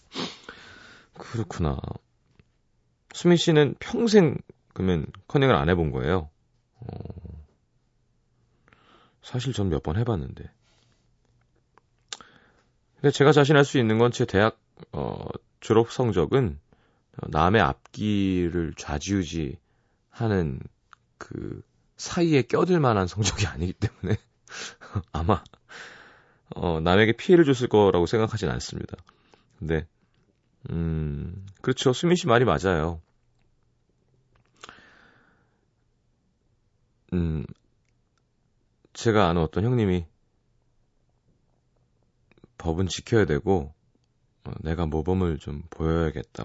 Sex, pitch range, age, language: male, 80-120 Hz, 30-49, Korean